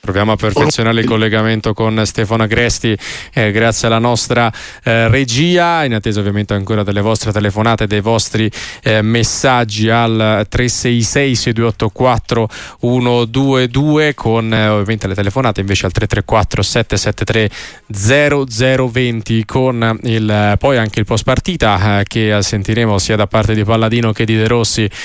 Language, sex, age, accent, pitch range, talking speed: Italian, male, 20-39, native, 110-135 Hz, 130 wpm